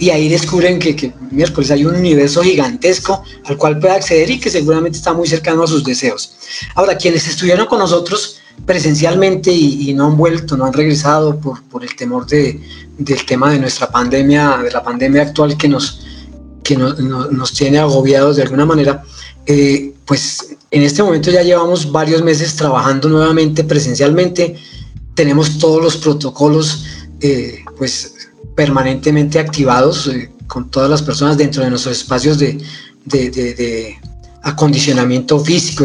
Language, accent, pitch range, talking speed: Spanish, Colombian, 135-160 Hz, 155 wpm